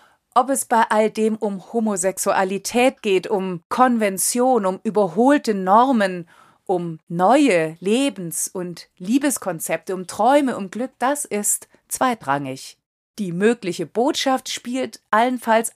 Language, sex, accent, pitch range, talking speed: German, female, German, 190-245 Hz, 115 wpm